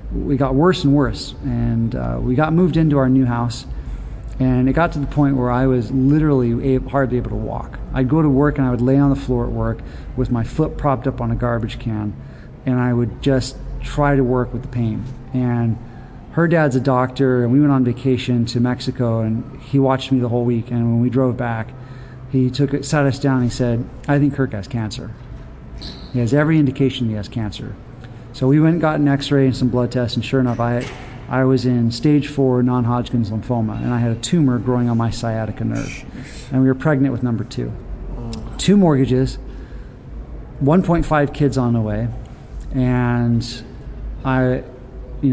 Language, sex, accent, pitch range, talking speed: English, male, American, 120-135 Hz, 200 wpm